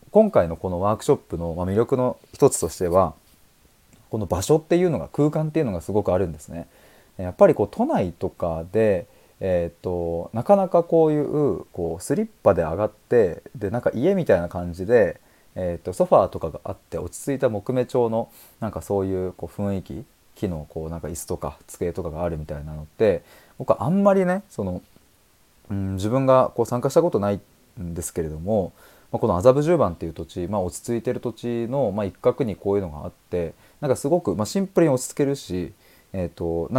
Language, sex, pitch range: Japanese, male, 85-125 Hz